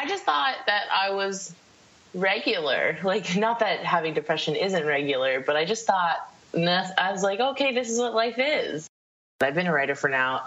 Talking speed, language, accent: 190 wpm, English, American